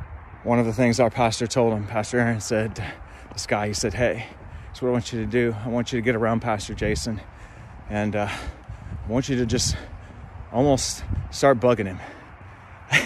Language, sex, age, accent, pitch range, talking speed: English, male, 30-49, American, 105-135 Hz, 195 wpm